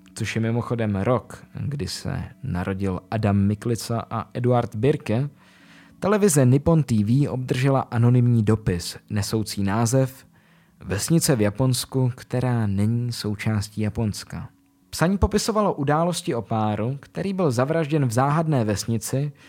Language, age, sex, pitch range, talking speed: Czech, 20-39, male, 105-145 Hz, 115 wpm